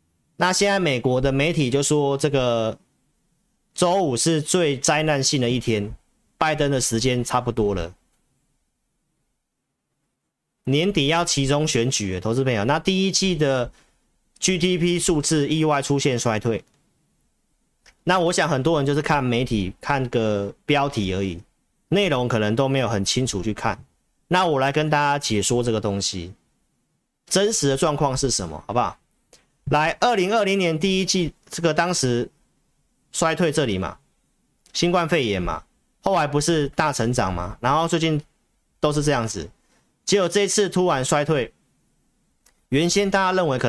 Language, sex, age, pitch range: Chinese, male, 40-59, 120-170 Hz